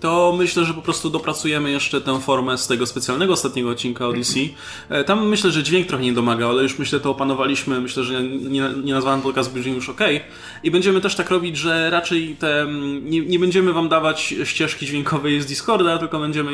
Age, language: 20-39, Polish